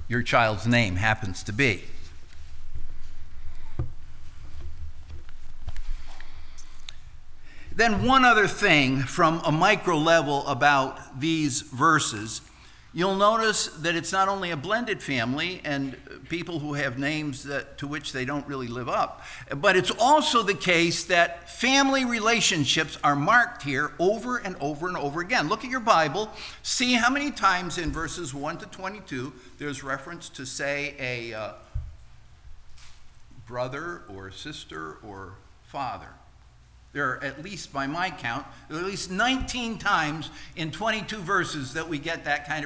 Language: English